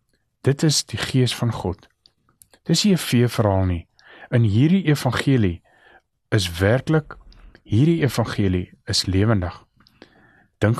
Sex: male